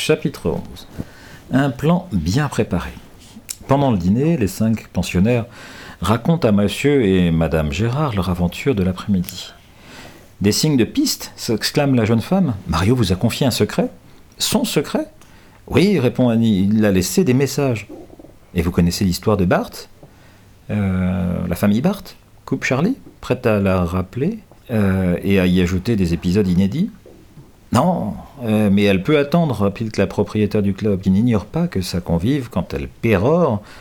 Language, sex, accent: French, male, French